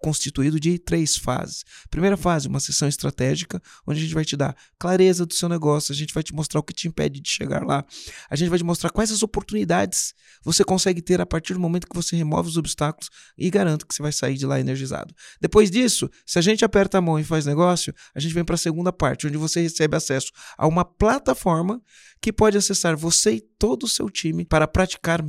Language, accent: Portuguese, Brazilian